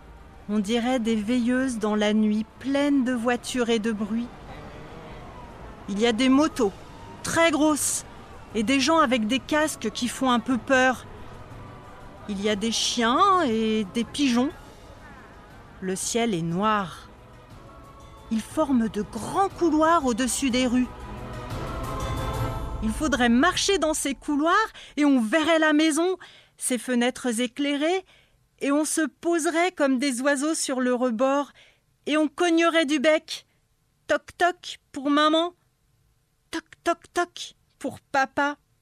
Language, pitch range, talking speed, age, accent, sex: French, 220-310 Hz, 135 wpm, 40-59, French, female